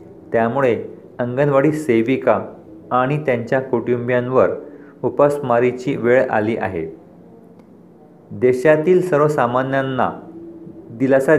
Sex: male